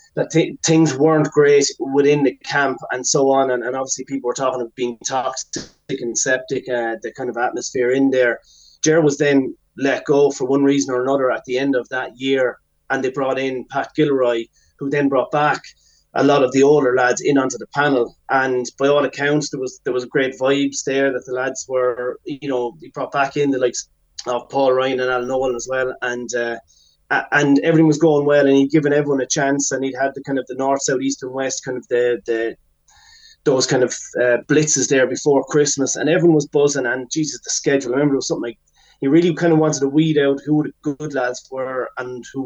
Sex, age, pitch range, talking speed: male, 30-49, 125-145 Hz, 225 wpm